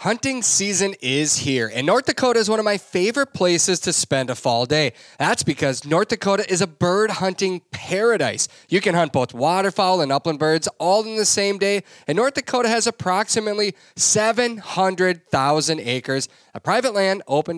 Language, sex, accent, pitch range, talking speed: English, male, American, 150-200 Hz, 175 wpm